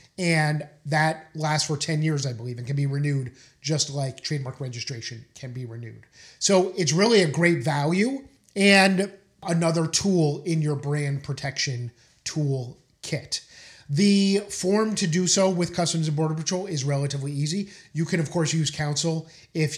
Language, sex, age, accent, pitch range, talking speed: English, male, 30-49, American, 140-170 Hz, 165 wpm